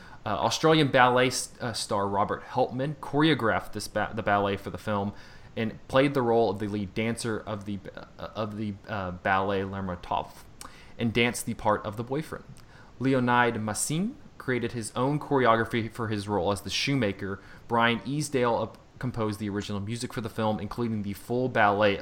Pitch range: 105-125 Hz